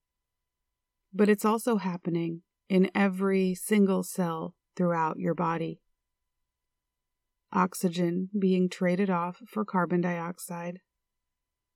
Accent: American